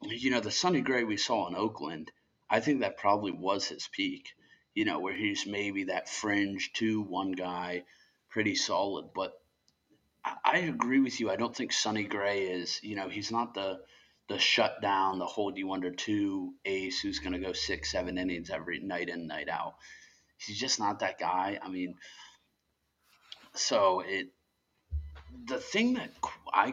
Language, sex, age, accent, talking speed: English, male, 30-49, American, 175 wpm